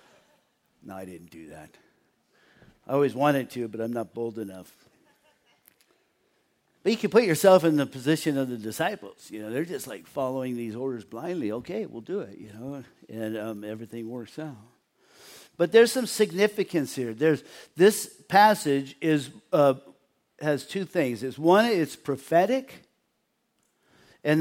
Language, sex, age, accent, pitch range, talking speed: English, male, 50-69, American, 130-180 Hz, 155 wpm